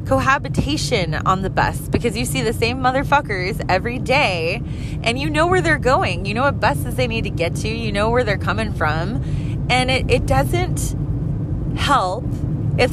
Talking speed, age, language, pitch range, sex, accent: 180 wpm, 20-39, English, 130-155 Hz, female, American